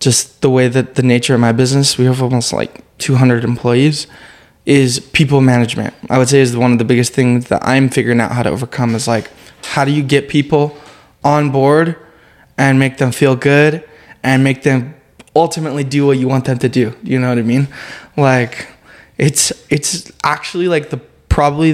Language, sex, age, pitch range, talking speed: English, male, 20-39, 125-145 Hz, 195 wpm